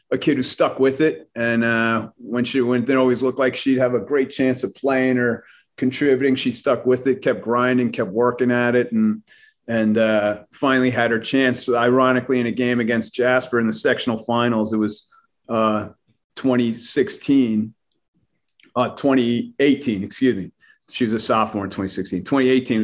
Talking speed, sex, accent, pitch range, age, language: 175 wpm, male, American, 115-130 Hz, 40-59, English